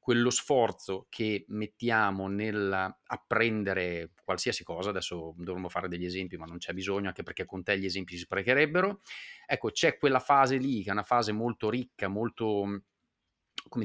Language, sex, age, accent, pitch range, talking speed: Italian, male, 30-49, native, 95-115 Hz, 165 wpm